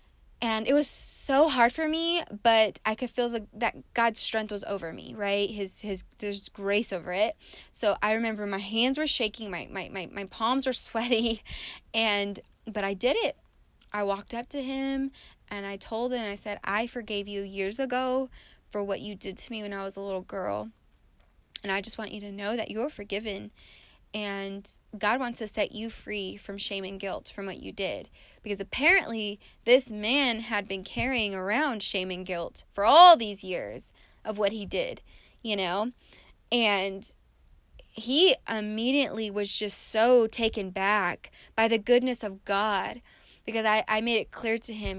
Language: English